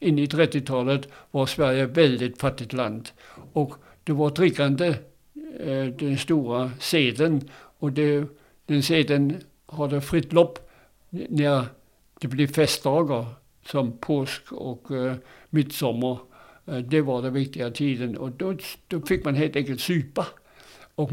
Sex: male